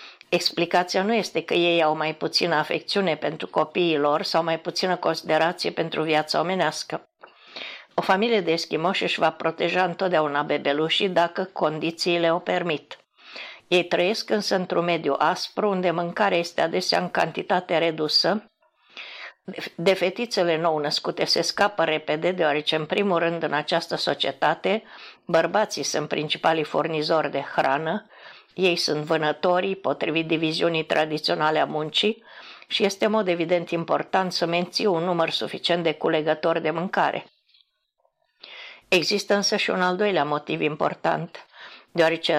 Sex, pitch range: female, 155-185 Hz